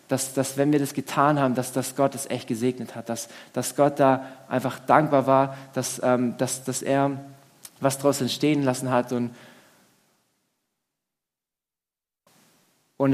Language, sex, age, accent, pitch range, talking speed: German, male, 20-39, German, 130-150 Hz, 155 wpm